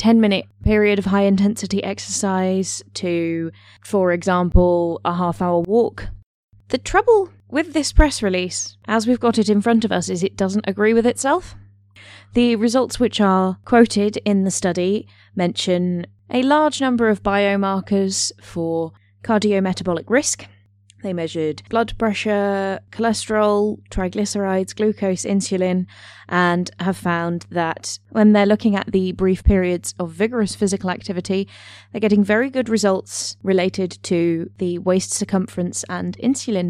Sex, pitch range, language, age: female, 175-225 Hz, English, 20-39